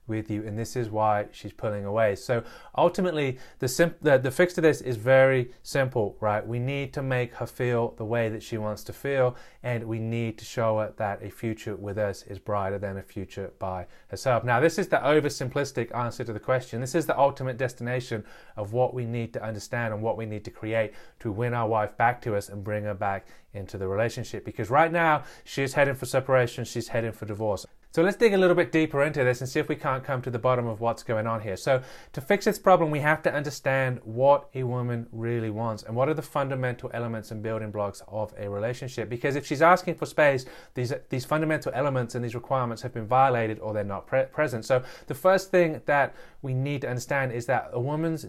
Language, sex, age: English, male, 30-49